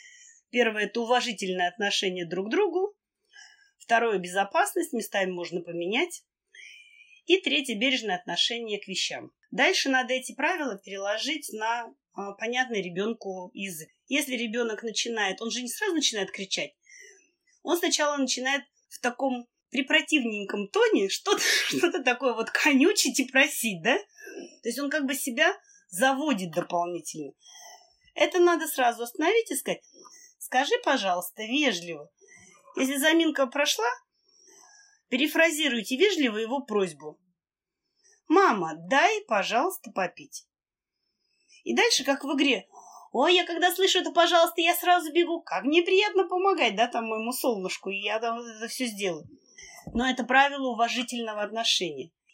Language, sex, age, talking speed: Russian, female, 20-39, 135 wpm